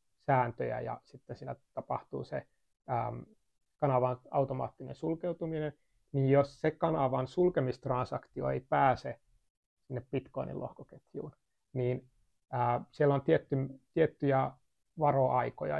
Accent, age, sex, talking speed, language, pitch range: native, 30-49, male, 90 wpm, Finnish, 125-140 Hz